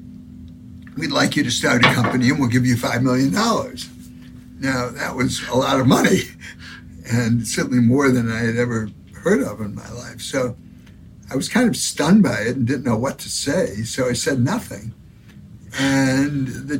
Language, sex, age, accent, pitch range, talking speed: Indonesian, male, 60-79, American, 115-140 Hz, 185 wpm